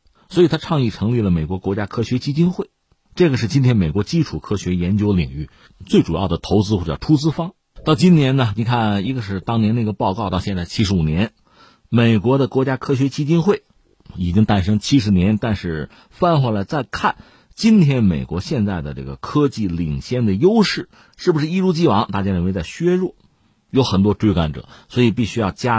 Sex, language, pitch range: male, Chinese, 100-155 Hz